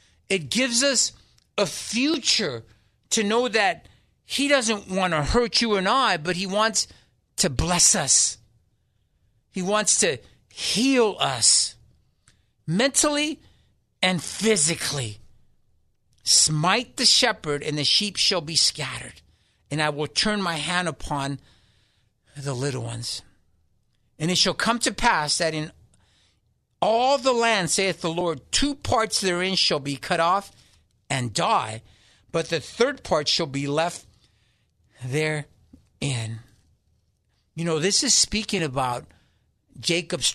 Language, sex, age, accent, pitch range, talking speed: English, male, 50-69, American, 115-185 Hz, 130 wpm